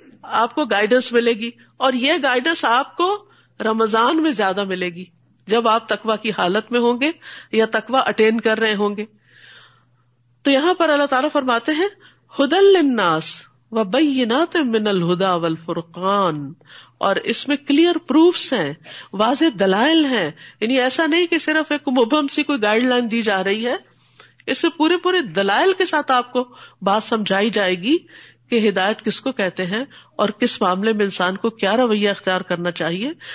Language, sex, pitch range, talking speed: Urdu, female, 205-300 Hz, 175 wpm